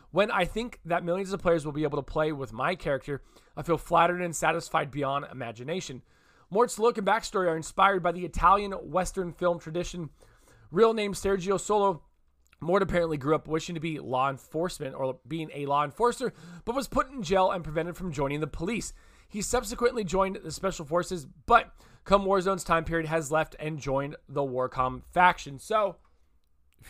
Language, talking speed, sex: English, 185 wpm, male